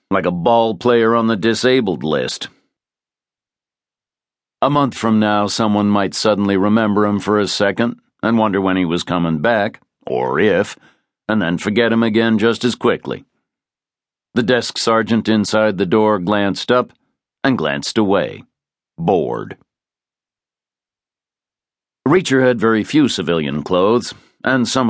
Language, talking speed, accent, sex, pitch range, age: English, 135 wpm, American, male, 95-115 Hz, 60-79